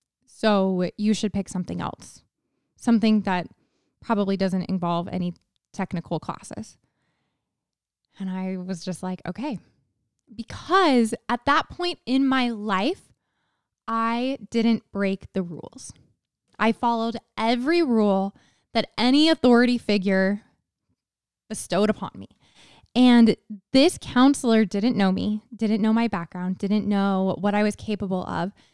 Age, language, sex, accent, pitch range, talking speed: 20-39, English, female, American, 190-230 Hz, 125 wpm